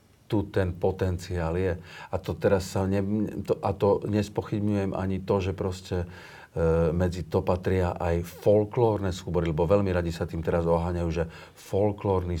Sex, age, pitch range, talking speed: male, 50-69, 85-100 Hz, 160 wpm